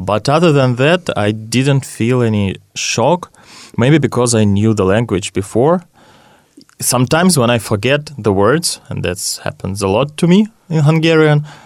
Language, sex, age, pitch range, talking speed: English, male, 20-39, 100-125 Hz, 160 wpm